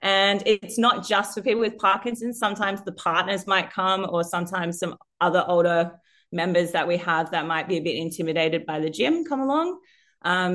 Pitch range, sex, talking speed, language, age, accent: 165-195 Hz, female, 195 wpm, English, 30-49, Australian